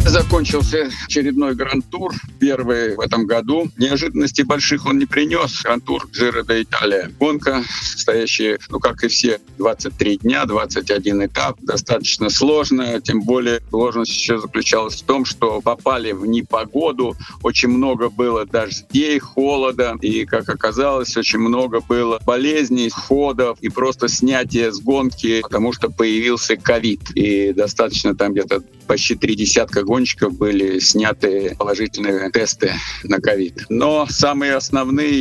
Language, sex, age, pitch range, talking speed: Russian, male, 50-69, 115-135 Hz, 135 wpm